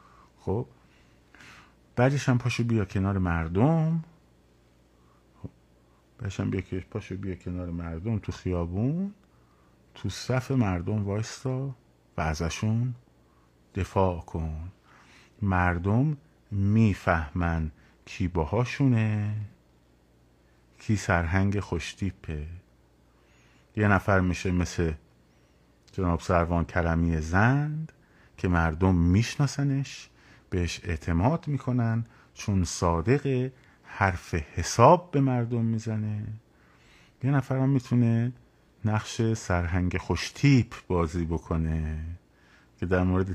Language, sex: Persian, male